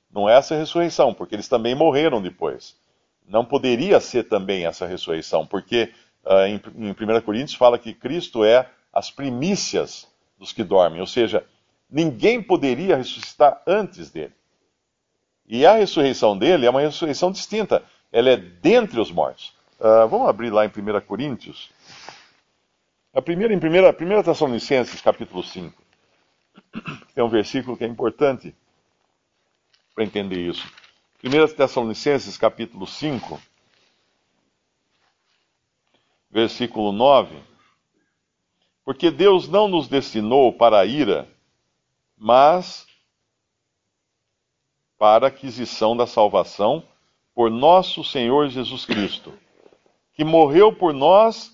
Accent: Brazilian